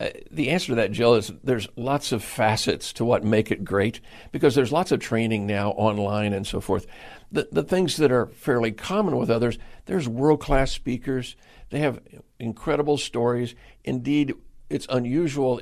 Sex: male